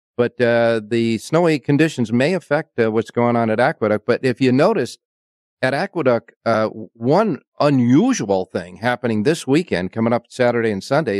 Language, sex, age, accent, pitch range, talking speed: English, male, 50-69, American, 100-120 Hz, 165 wpm